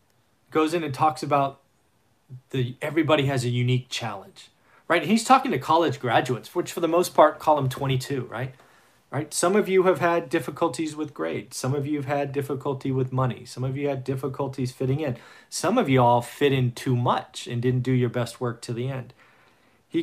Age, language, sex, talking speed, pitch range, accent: 40-59, English, male, 200 wpm, 120-145 Hz, American